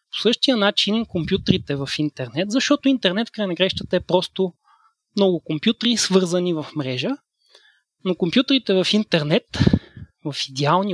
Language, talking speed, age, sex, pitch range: Bulgarian, 125 wpm, 30-49, male, 160-230 Hz